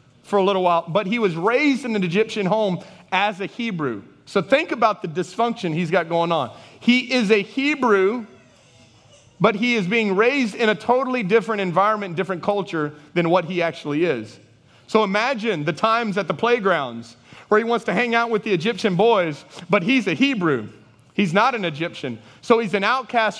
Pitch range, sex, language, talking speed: 185-240 Hz, male, English, 190 wpm